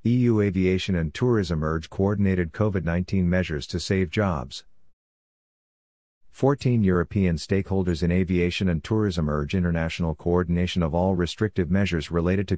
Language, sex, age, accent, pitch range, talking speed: English, male, 50-69, American, 85-100 Hz, 130 wpm